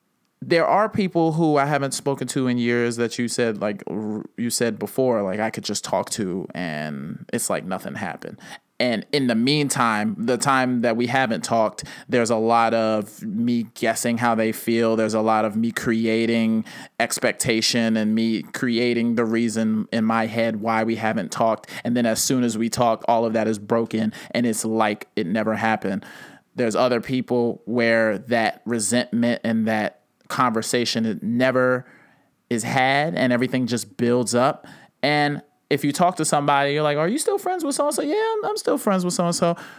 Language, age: English, 20-39